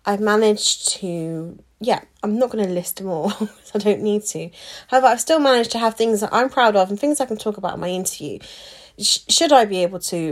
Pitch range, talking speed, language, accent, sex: 205-255 Hz, 240 wpm, English, British, female